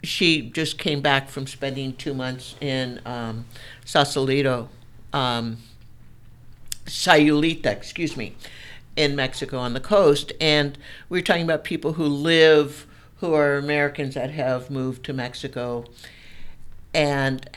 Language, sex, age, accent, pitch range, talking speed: English, male, 60-79, American, 125-155 Hz, 125 wpm